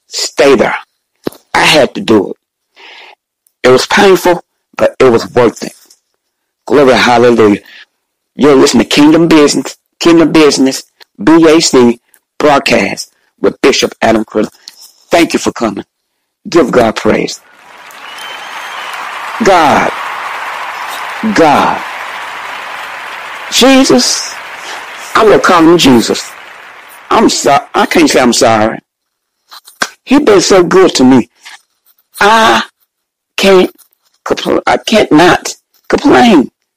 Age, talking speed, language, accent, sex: 60-79, 105 wpm, English, American, male